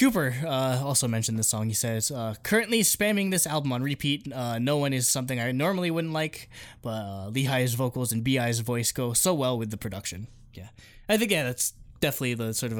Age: 20-39